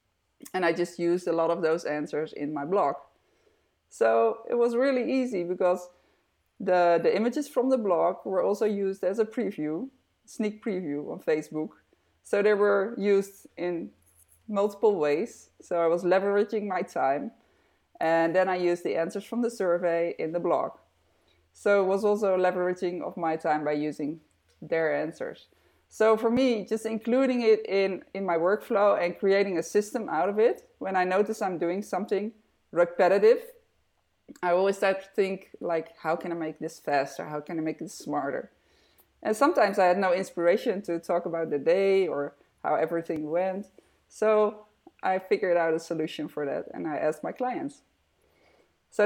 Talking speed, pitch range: 175 wpm, 165-210 Hz